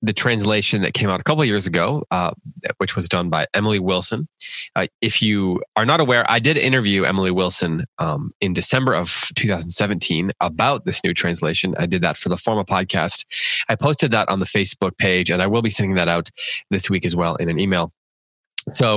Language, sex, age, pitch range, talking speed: English, male, 20-39, 90-115 Hz, 210 wpm